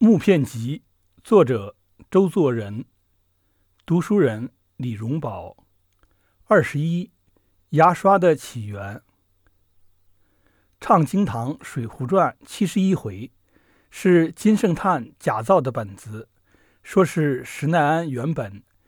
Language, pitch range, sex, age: Chinese, 105-175 Hz, male, 60-79